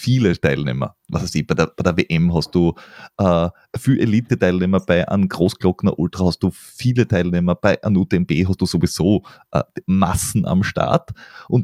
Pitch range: 95-130 Hz